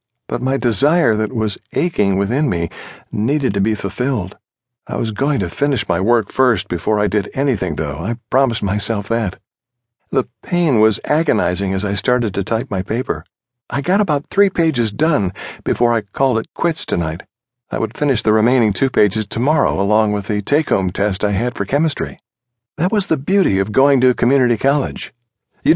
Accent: American